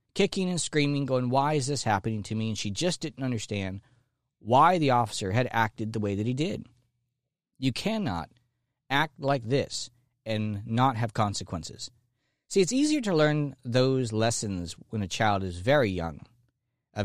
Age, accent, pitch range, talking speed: 40-59, American, 110-145 Hz, 170 wpm